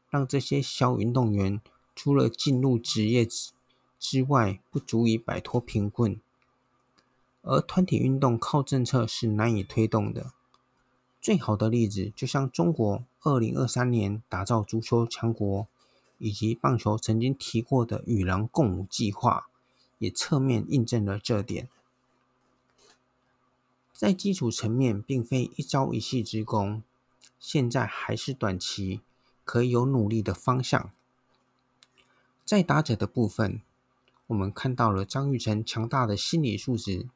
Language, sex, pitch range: Chinese, male, 105-130 Hz